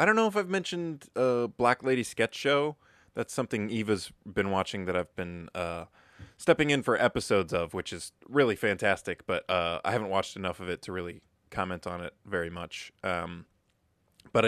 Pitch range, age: 90-120 Hz, 20-39